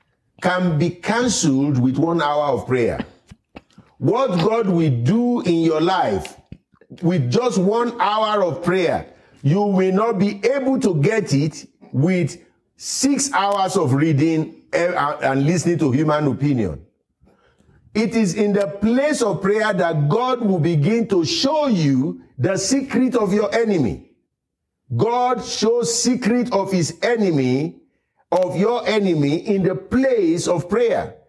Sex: male